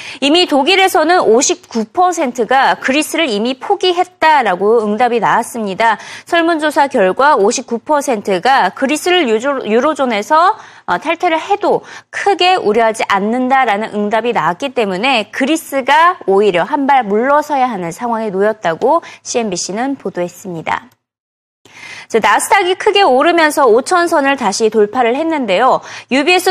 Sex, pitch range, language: female, 225-335 Hz, Korean